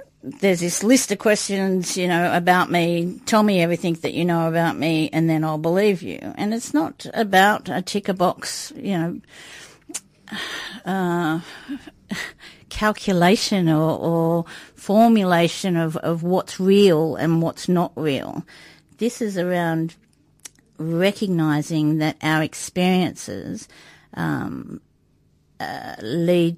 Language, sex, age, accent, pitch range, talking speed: English, female, 50-69, Australian, 160-185 Hz, 120 wpm